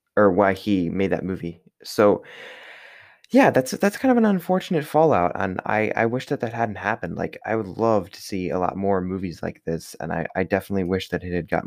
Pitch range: 90-110 Hz